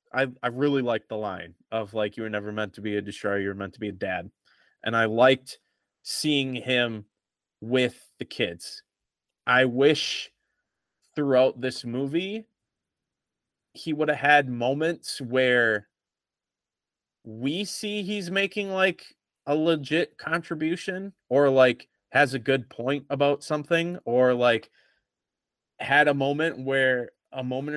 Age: 20-39